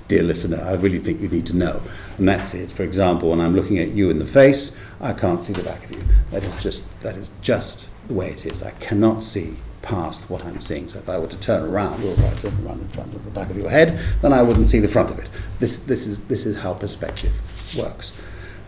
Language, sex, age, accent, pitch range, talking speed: English, male, 50-69, British, 90-110 Hz, 265 wpm